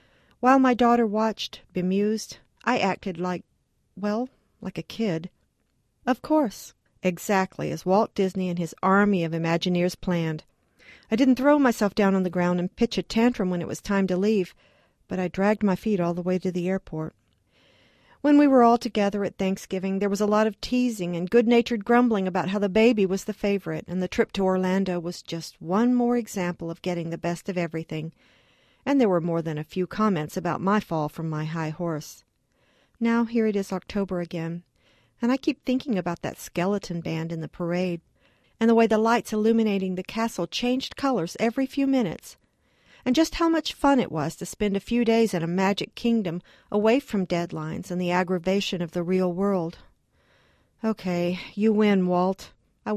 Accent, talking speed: American, 190 wpm